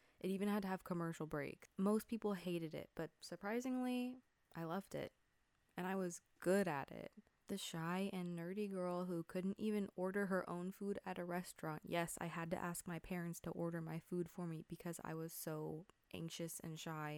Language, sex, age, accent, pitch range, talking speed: English, female, 20-39, American, 165-190 Hz, 200 wpm